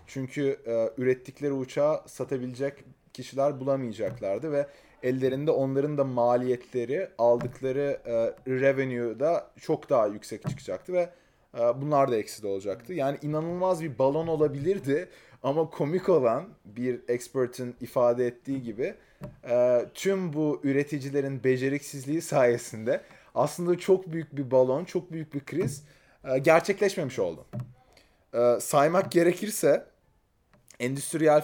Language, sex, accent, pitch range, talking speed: Turkish, male, native, 120-145 Hz, 115 wpm